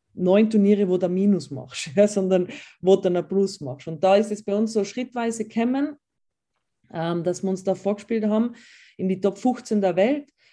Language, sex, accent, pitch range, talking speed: German, female, German, 175-215 Hz, 205 wpm